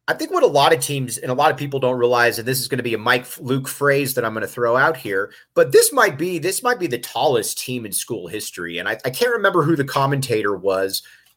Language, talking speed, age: English, 280 wpm, 30-49